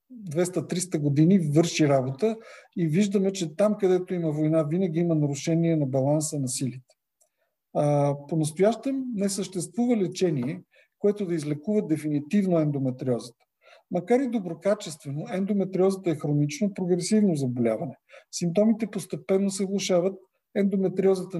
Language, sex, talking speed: Bulgarian, male, 115 wpm